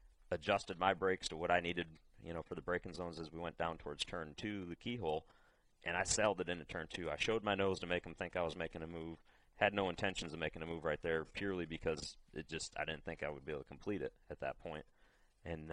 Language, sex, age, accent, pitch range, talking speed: English, male, 30-49, American, 80-95 Hz, 265 wpm